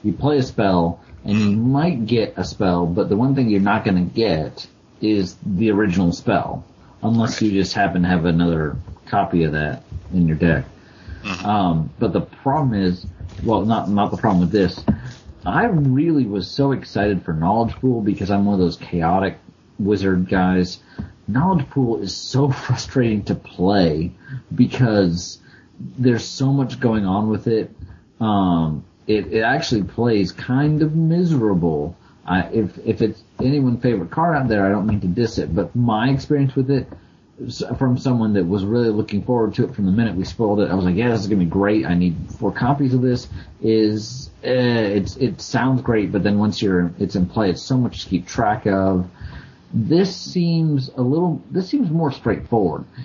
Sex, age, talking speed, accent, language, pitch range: male, 40-59, 190 wpm, American, English, 90-120 Hz